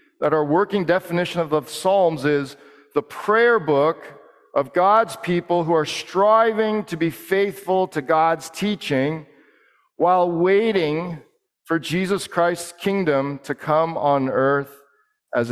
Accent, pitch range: American, 135-180 Hz